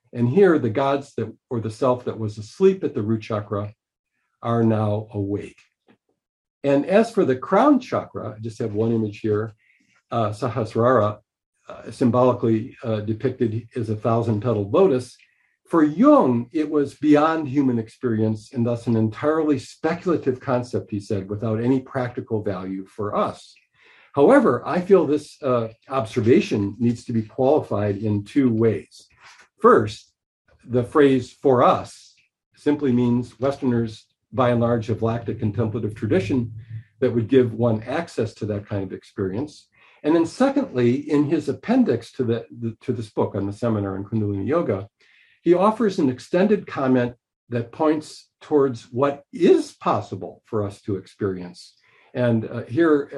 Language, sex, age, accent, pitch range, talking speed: English, male, 50-69, American, 110-135 Hz, 155 wpm